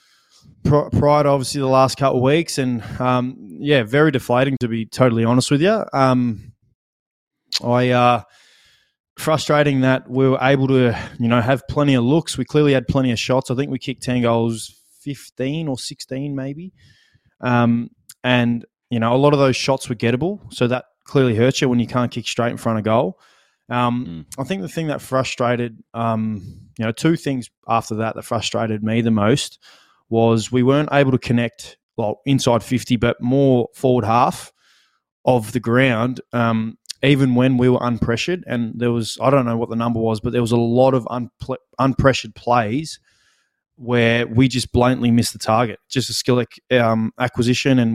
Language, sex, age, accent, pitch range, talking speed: English, male, 20-39, Australian, 115-135 Hz, 185 wpm